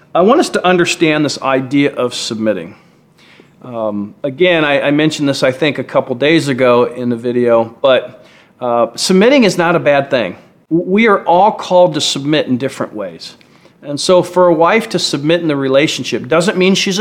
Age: 40-59